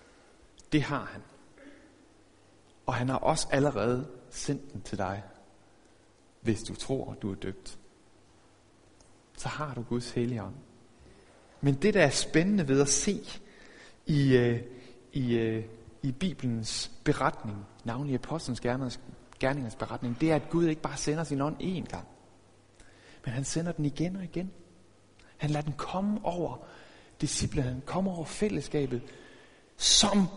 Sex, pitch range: male, 115-165 Hz